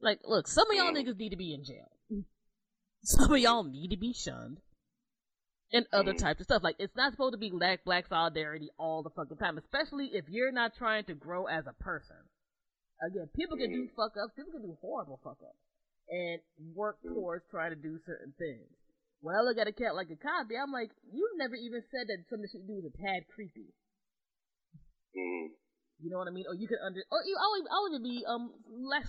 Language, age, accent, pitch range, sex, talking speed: English, 20-39, American, 165-250 Hz, female, 215 wpm